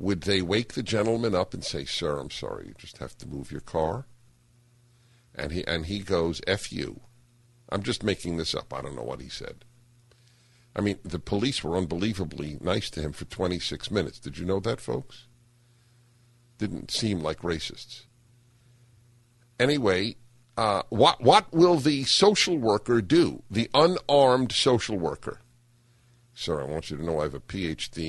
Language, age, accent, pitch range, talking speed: English, 50-69, American, 95-120 Hz, 170 wpm